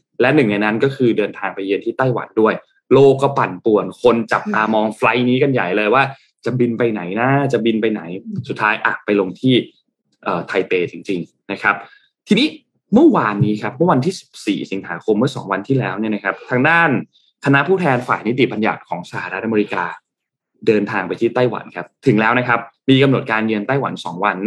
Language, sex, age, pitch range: Thai, male, 20-39, 105-140 Hz